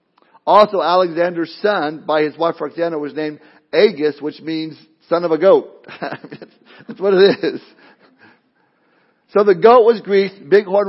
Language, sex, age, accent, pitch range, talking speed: English, male, 50-69, American, 140-170 Hz, 145 wpm